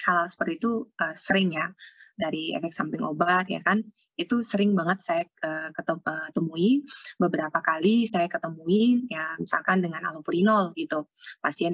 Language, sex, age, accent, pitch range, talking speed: English, female, 20-39, Indonesian, 170-220 Hz, 145 wpm